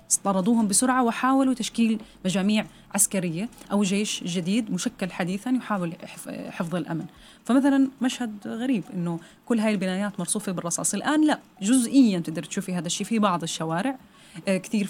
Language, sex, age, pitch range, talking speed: Arabic, female, 30-49, 180-225 Hz, 135 wpm